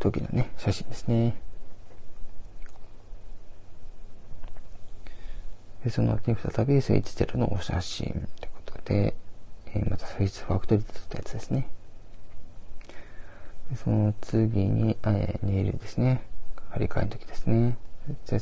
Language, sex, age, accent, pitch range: Japanese, male, 20-39, Korean, 95-110 Hz